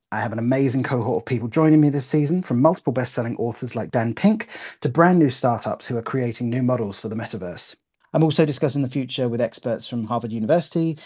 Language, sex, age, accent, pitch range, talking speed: English, male, 30-49, British, 120-160 Hz, 215 wpm